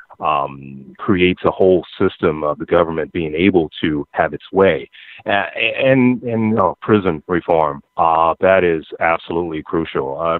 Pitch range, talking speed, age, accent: 85-115 Hz, 145 wpm, 30-49, American